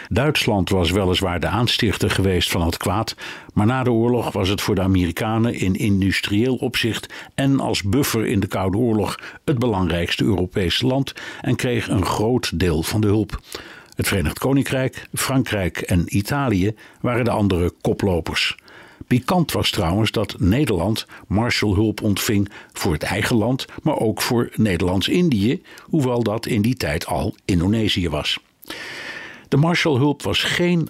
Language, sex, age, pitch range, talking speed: Dutch, male, 60-79, 95-120 Hz, 150 wpm